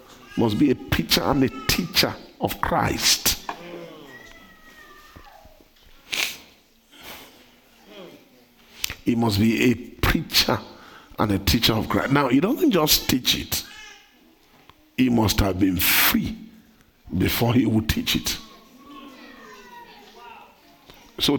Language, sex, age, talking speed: English, male, 50-69, 100 wpm